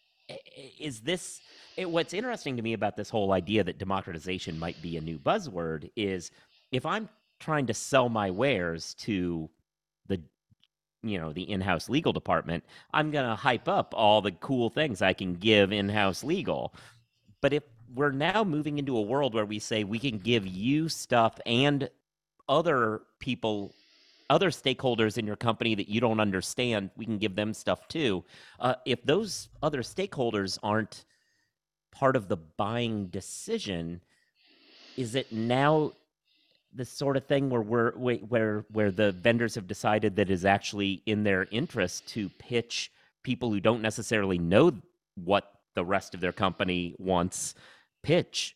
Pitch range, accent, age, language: 95-125 Hz, American, 40-59, English